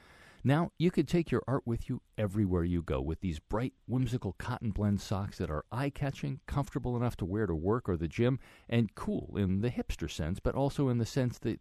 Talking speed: 215 wpm